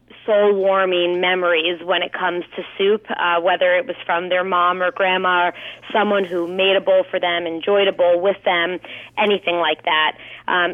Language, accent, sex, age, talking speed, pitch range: English, American, female, 30-49, 185 wpm, 175-195 Hz